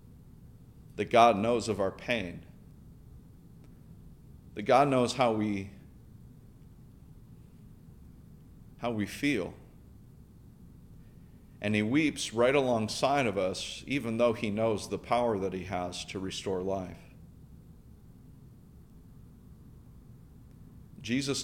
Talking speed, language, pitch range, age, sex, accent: 95 wpm, English, 100-120 Hz, 40-59, male, American